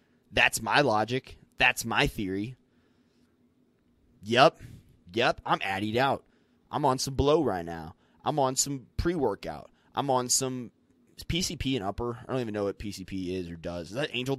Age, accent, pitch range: 20-39, American, 100-135 Hz